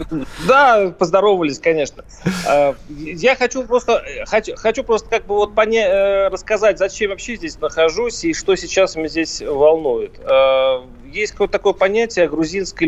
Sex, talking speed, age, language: male, 135 wpm, 30-49, Russian